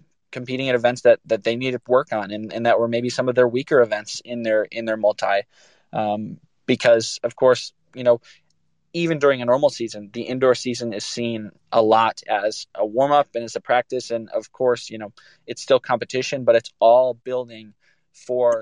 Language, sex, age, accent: English, male, 20-39, American